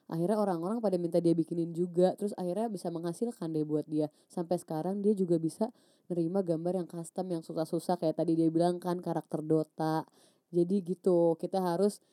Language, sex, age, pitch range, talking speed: Indonesian, female, 20-39, 160-190 Hz, 180 wpm